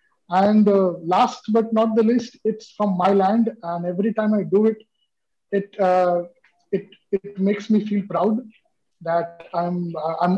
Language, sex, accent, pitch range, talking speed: English, male, Indian, 180-220 Hz, 160 wpm